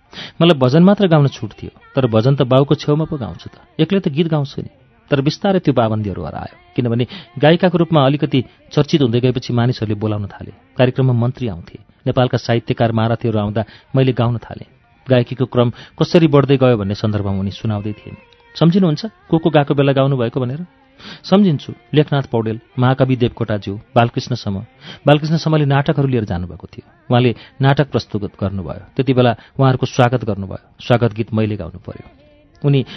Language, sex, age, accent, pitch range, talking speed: English, male, 40-59, Indian, 110-145 Hz, 145 wpm